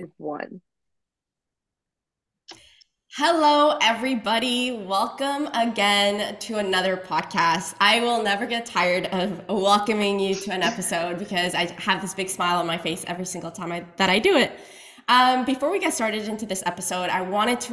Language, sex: English, female